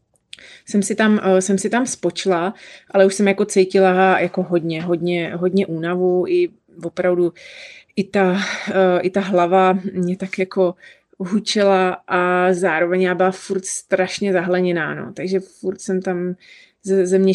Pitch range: 180-195 Hz